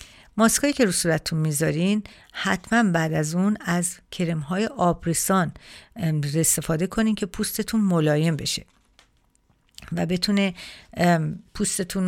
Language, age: Persian, 50-69